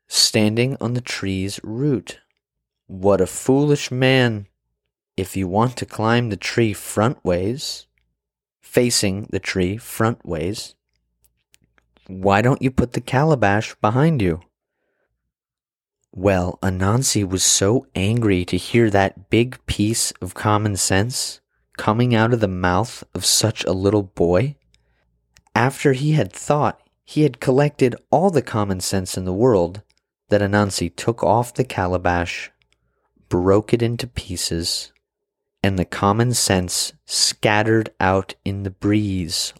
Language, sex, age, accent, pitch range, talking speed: English, male, 30-49, American, 90-115 Hz, 130 wpm